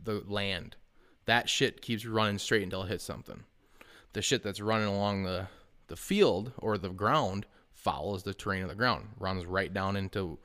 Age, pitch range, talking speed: 20-39, 95-110 Hz, 185 wpm